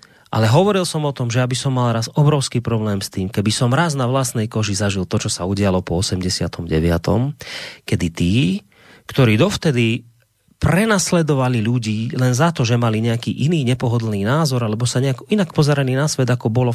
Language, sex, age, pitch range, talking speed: Slovak, male, 30-49, 120-180 Hz, 180 wpm